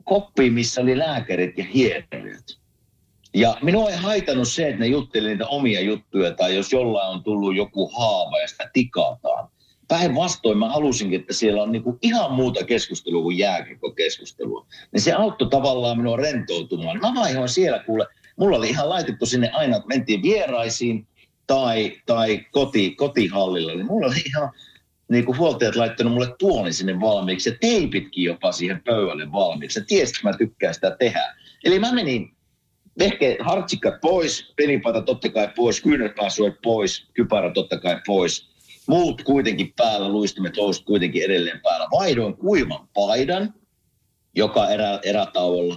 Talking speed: 150 wpm